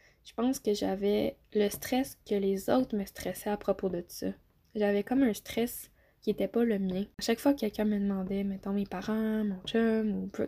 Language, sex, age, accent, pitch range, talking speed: French, female, 10-29, Canadian, 200-240 Hz, 210 wpm